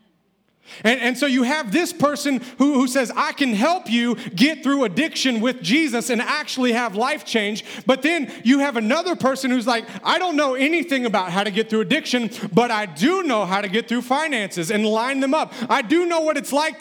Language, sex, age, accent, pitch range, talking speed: English, male, 30-49, American, 235-310 Hz, 220 wpm